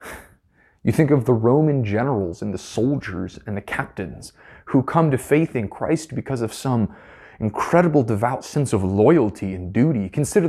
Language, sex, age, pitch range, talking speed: English, male, 30-49, 105-165 Hz, 165 wpm